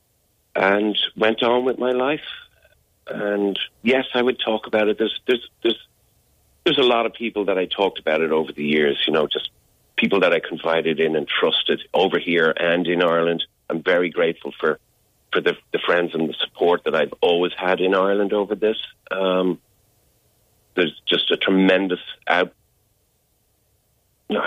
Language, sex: English, male